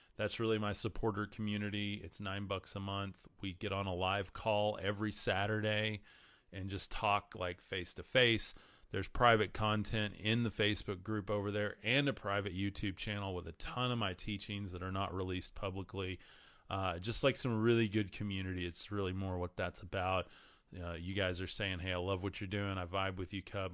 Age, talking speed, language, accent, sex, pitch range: 30-49, 200 wpm, English, American, male, 90-105 Hz